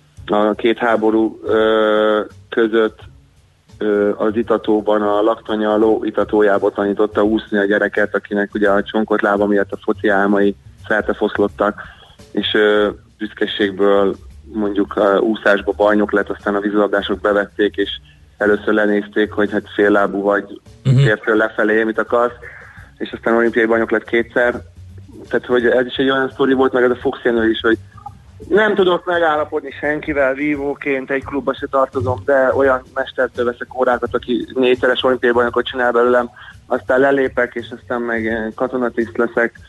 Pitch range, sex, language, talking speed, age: 105-125 Hz, male, Hungarian, 140 wpm, 30-49